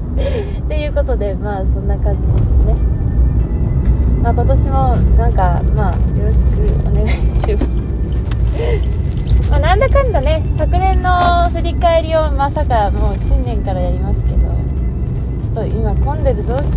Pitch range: 65-90 Hz